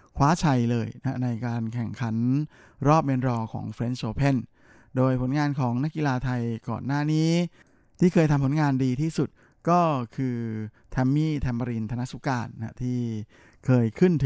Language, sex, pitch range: Thai, male, 115-140 Hz